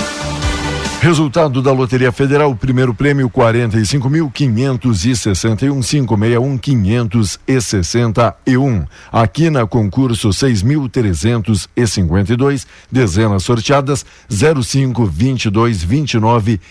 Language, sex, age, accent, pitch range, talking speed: Portuguese, male, 60-79, Brazilian, 110-140 Hz, 65 wpm